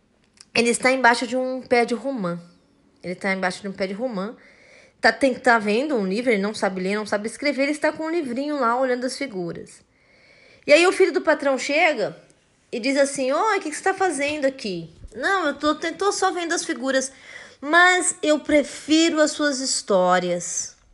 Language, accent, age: Portuguese, Brazilian, 20-39